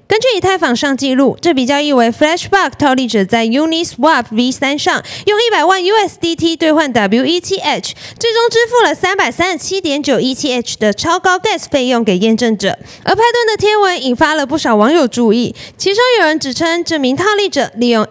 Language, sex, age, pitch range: Chinese, female, 20-39, 235-360 Hz